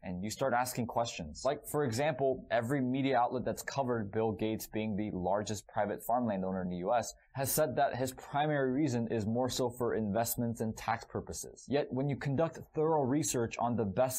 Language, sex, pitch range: English, male, 110-145 Hz